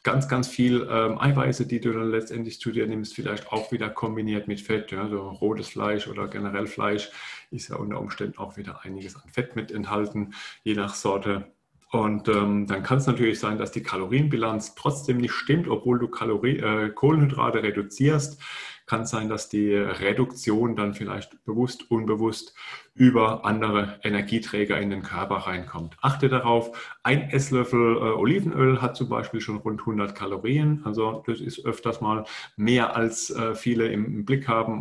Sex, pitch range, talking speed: male, 105-125 Hz, 165 wpm